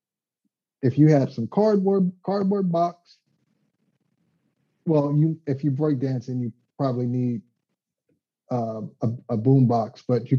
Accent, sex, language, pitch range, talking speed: American, male, English, 125-175 Hz, 135 wpm